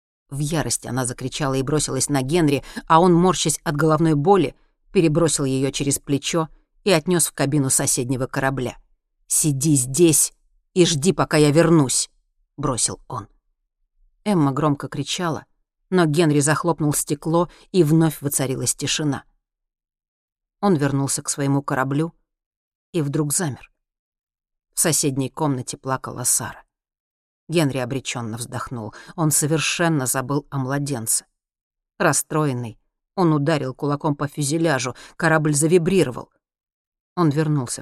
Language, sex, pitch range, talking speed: Russian, female, 135-165 Hz, 120 wpm